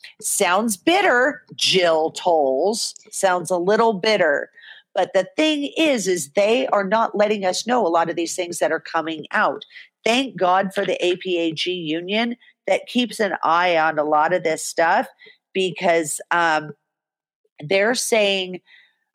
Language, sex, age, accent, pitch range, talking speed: English, female, 40-59, American, 180-235 Hz, 150 wpm